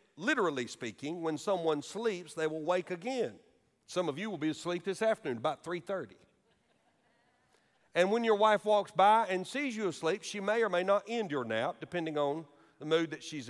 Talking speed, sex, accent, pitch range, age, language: 190 wpm, male, American, 160-215 Hz, 50-69, English